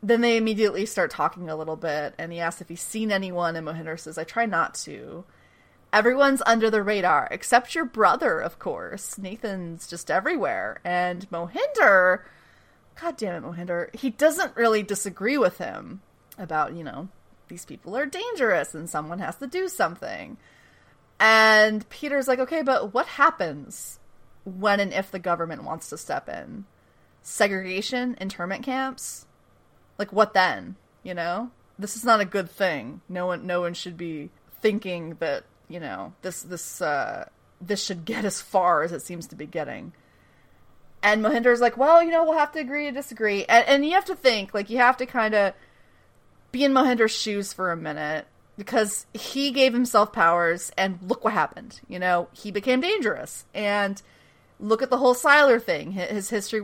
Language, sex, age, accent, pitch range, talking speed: English, female, 30-49, American, 175-245 Hz, 175 wpm